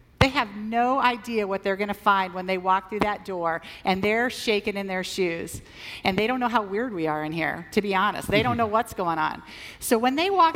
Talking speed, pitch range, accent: 250 wpm, 205-270 Hz, American